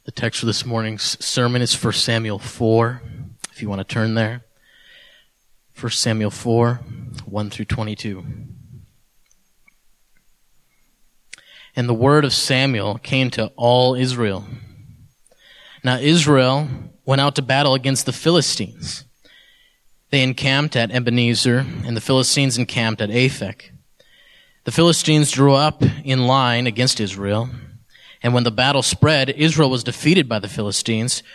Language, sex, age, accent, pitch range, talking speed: English, male, 20-39, American, 115-140 Hz, 130 wpm